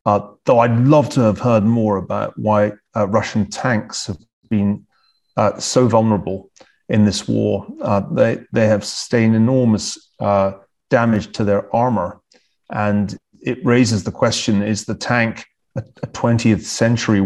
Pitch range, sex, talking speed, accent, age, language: 100-120 Hz, male, 155 wpm, British, 30-49, English